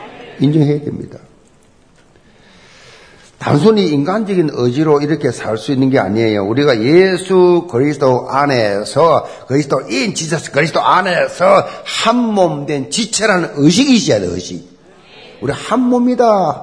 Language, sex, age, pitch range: Korean, male, 50-69, 135-200 Hz